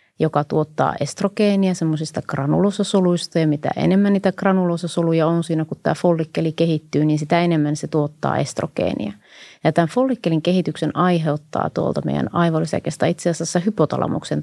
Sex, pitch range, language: female, 155-180 Hz, Finnish